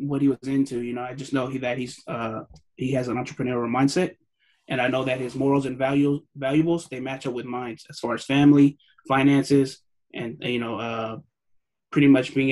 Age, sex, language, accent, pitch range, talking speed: 20-39, male, English, American, 125-145 Hz, 205 wpm